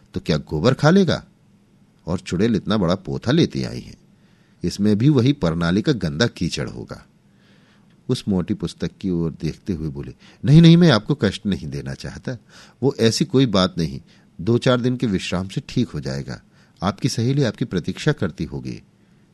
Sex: male